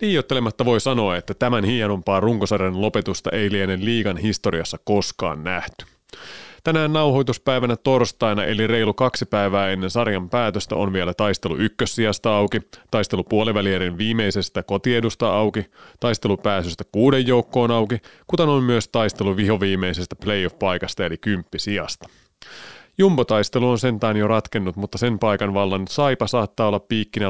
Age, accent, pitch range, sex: 30-49, native, 95-120 Hz, male